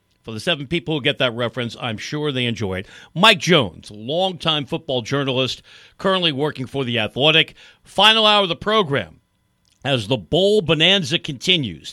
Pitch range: 125-175 Hz